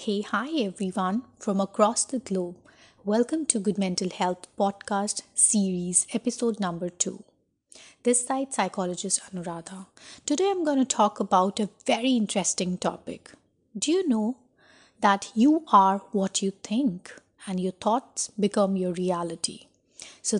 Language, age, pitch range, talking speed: English, 30-49, 195-245 Hz, 140 wpm